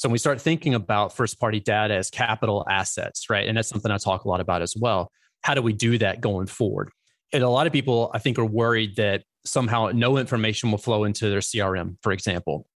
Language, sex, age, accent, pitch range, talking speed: English, male, 30-49, American, 105-120 Hz, 230 wpm